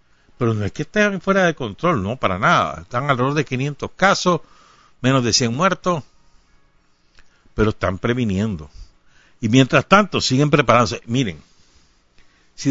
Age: 60-79